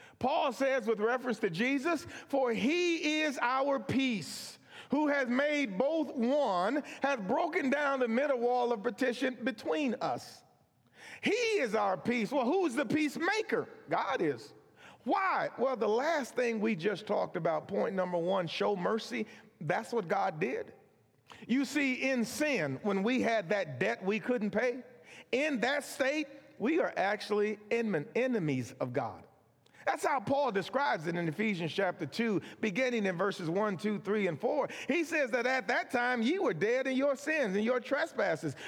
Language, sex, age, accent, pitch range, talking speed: English, male, 40-59, American, 210-285 Hz, 170 wpm